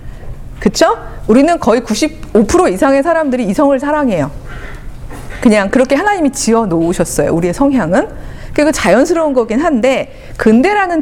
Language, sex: Korean, female